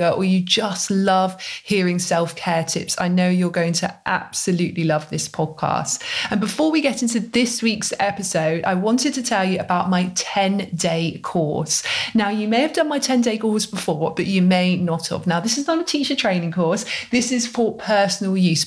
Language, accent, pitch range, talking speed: English, British, 180-235 Hz, 195 wpm